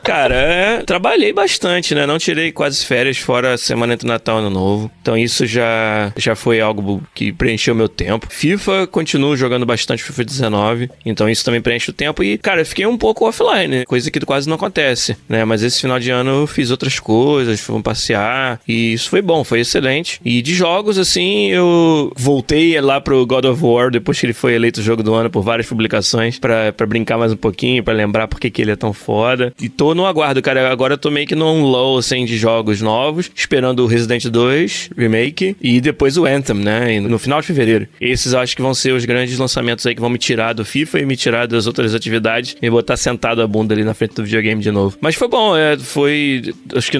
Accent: Brazilian